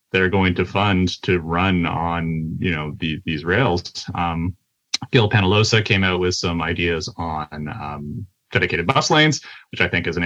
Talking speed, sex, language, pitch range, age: 175 wpm, male, English, 90-115 Hz, 30-49